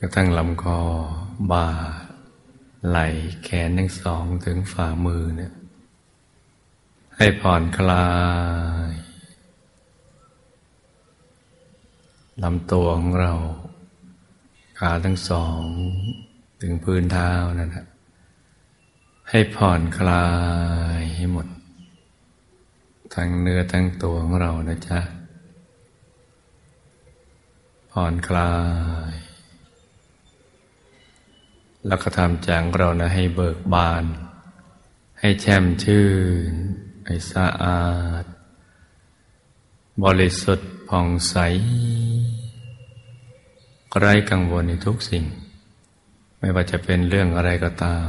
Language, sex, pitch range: Thai, male, 85-95 Hz